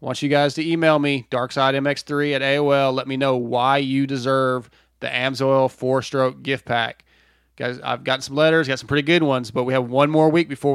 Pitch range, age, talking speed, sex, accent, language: 130-150 Hz, 30-49, 210 wpm, male, American, English